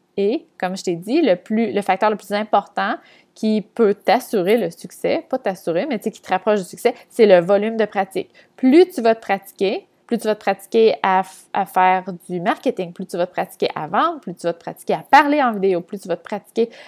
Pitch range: 185-240 Hz